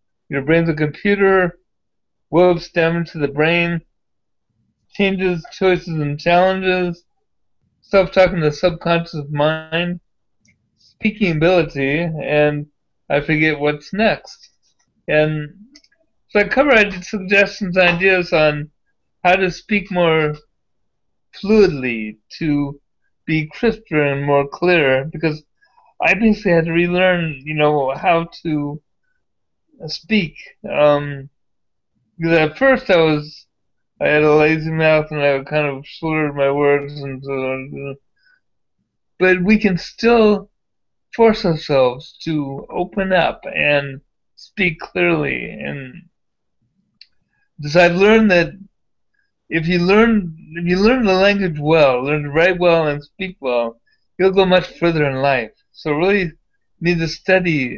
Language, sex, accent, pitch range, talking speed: English, male, American, 145-185 Hz, 120 wpm